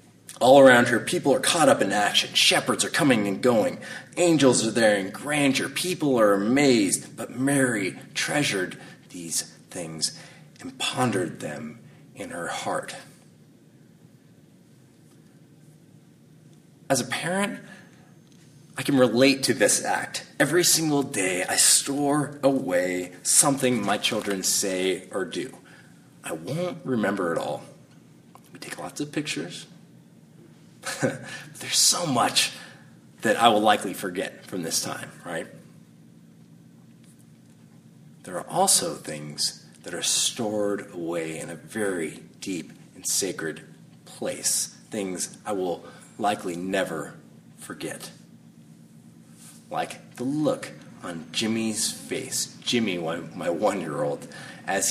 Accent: American